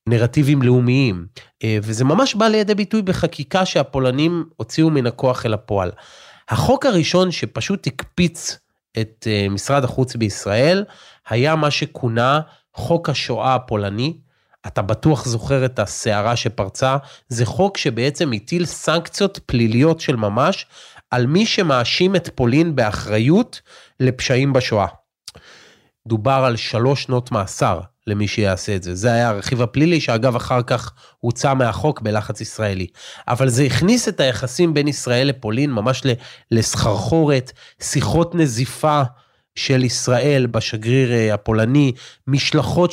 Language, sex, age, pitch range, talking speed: Hebrew, male, 30-49, 115-150 Hz, 120 wpm